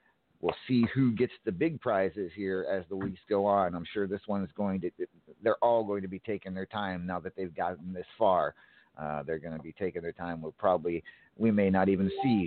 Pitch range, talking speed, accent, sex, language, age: 95-130 Hz, 235 wpm, American, male, English, 50-69